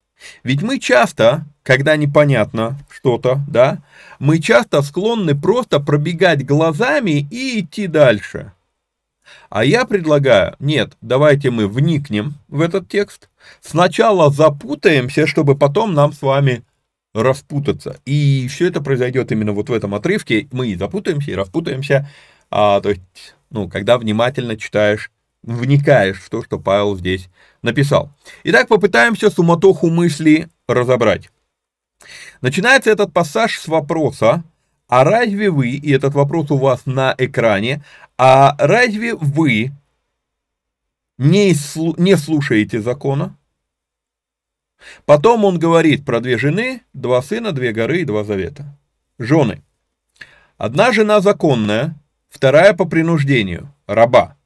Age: 30-49